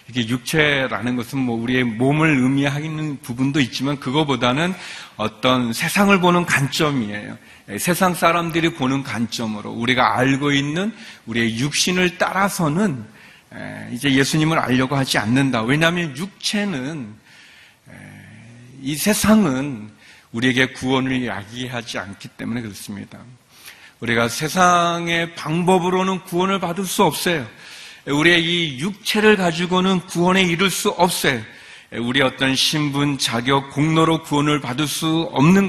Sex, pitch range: male, 130-185 Hz